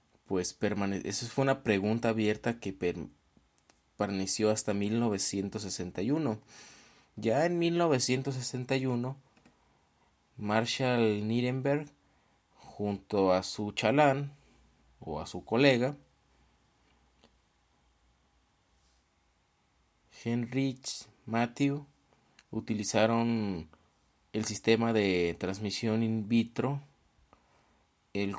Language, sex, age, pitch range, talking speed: Spanish, male, 30-49, 95-115 Hz, 75 wpm